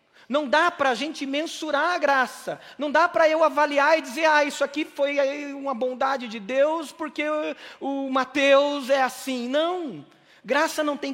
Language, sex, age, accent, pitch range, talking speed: Portuguese, male, 40-59, Brazilian, 195-265 Hz, 170 wpm